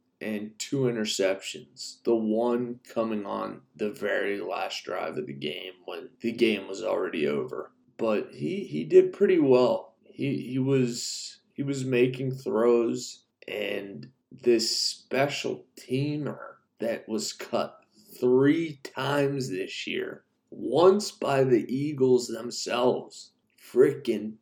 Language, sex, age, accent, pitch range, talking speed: English, male, 20-39, American, 115-145 Hz, 125 wpm